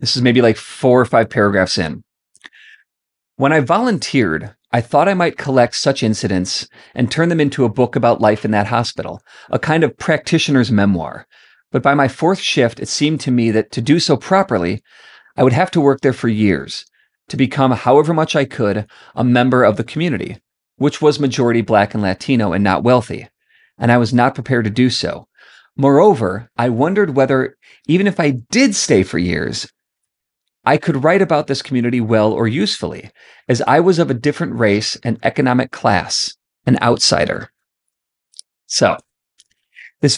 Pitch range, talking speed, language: 110-145 Hz, 180 wpm, English